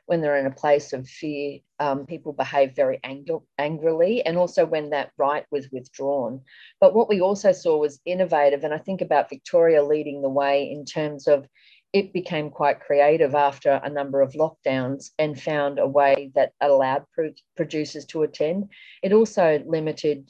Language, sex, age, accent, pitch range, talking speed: English, female, 40-59, Australian, 140-170 Hz, 175 wpm